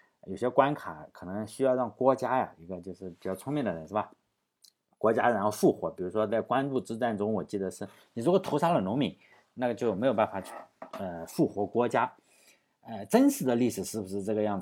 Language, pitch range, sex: Chinese, 100-130 Hz, male